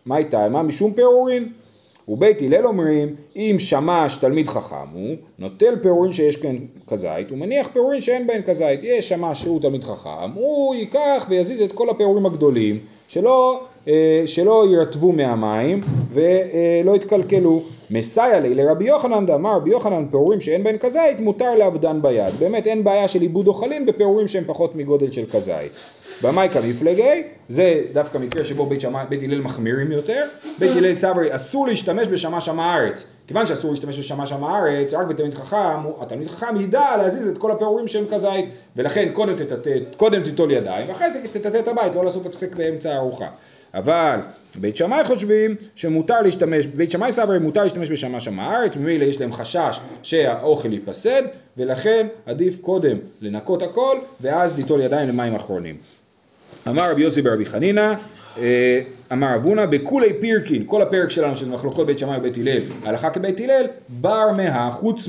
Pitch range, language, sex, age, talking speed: 140-215 Hz, Hebrew, male, 30-49, 155 wpm